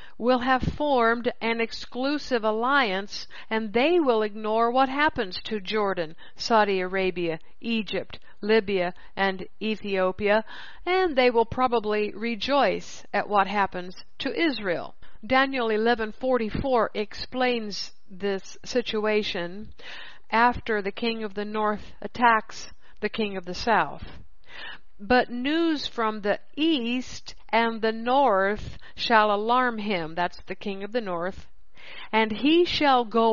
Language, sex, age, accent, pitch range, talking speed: English, female, 60-79, American, 205-250 Hz, 120 wpm